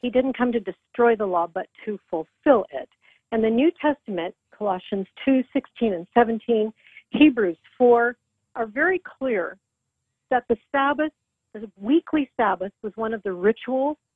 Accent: American